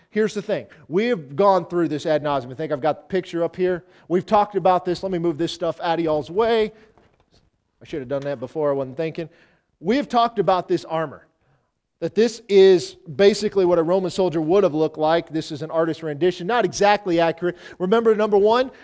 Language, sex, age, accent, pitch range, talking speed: English, male, 40-59, American, 165-225 Hz, 220 wpm